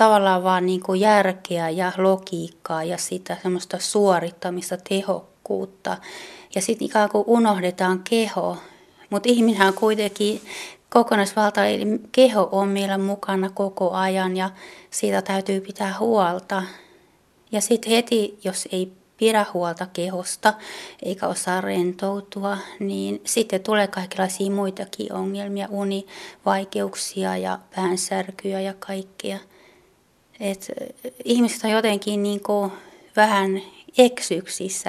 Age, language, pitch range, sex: 30-49, Finnish, 185-205 Hz, female